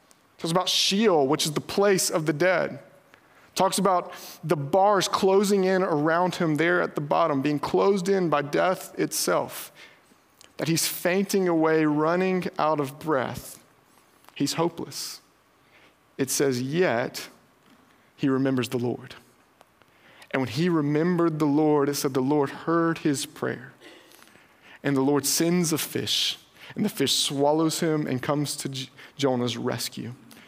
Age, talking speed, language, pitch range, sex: 30-49, 150 wpm, English, 155-200 Hz, male